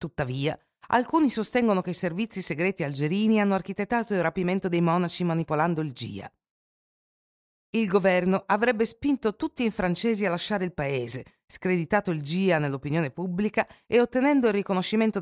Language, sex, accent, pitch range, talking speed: Italian, female, native, 140-200 Hz, 145 wpm